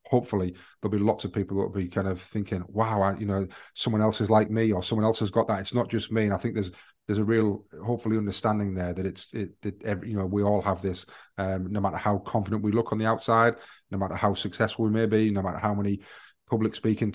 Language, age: English, 30-49